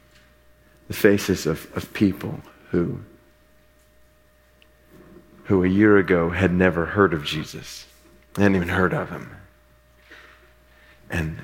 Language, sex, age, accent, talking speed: English, male, 40-59, American, 110 wpm